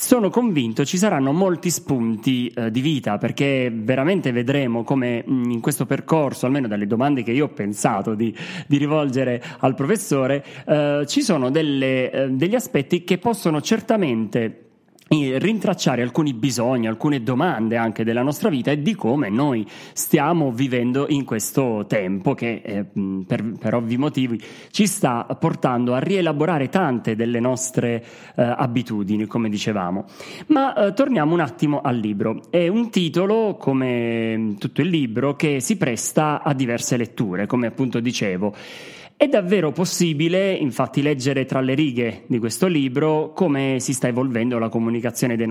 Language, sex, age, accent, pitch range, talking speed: Italian, male, 30-49, native, 120-155 Hz, 150 wpm